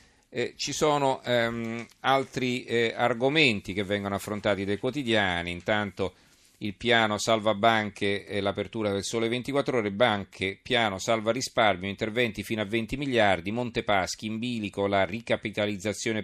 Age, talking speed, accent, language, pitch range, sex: 40-59, 135 wpm, native, Italian, 95-115 Hz, male